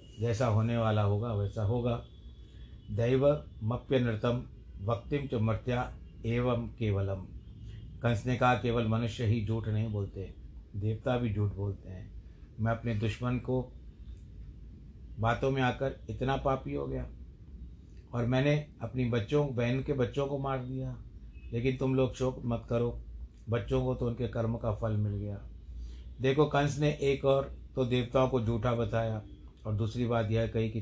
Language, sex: Hindi, male